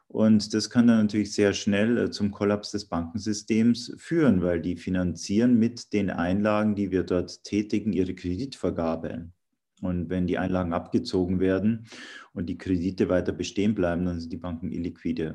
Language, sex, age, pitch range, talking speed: German, male, 40-59, 90-105 Hz, 160 wpm